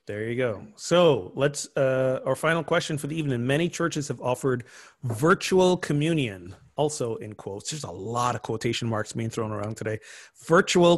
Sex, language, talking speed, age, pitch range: male, English, 175 wpm, 30-49, 125-150 Hz